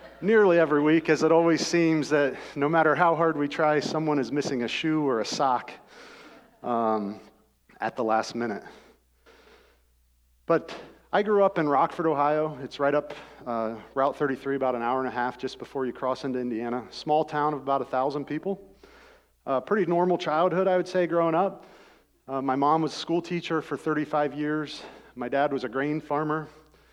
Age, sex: 40-59, male